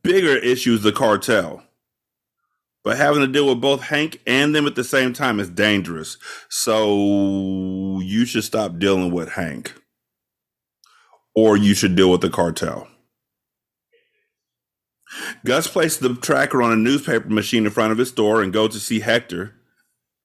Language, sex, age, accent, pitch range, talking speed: English, male, 30-49, American, 105-160 Hz, 155 wpm